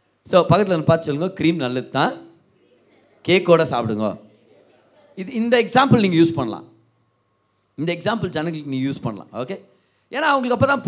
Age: 30-49